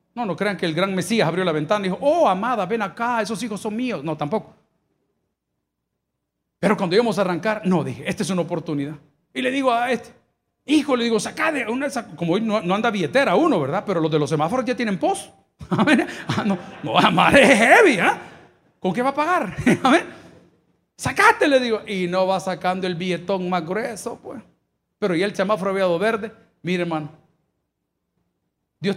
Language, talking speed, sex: Spanish, 200 wpm, male